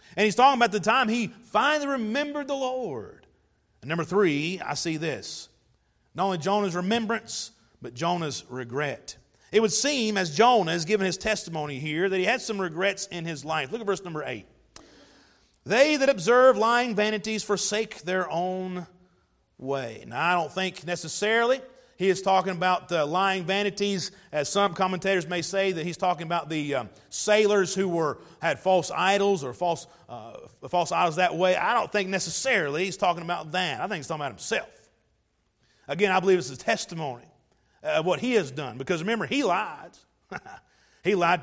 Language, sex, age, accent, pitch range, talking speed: English, male, 40-59, American, 165-210 Hz, 180 wpm